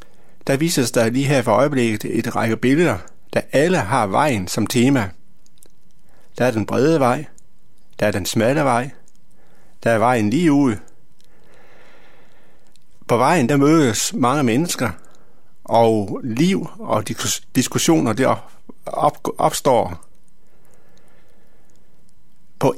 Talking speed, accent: 115 wpm, native